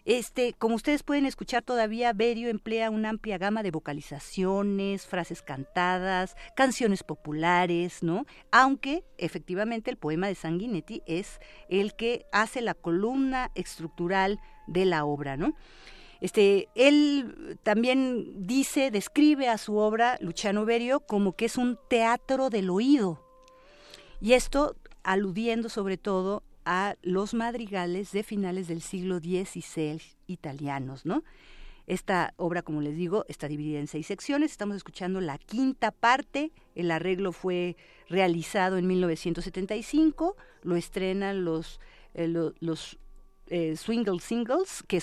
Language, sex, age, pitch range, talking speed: Spanish, female, 40-59, 170-230 Hz, 130 wpm